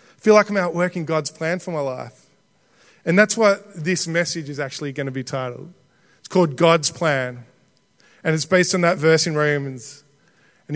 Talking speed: 190 wpm